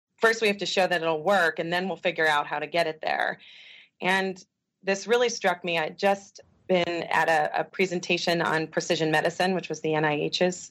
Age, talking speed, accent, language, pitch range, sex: 30-49, 215 wpm, American, English, 160-185 Hz, female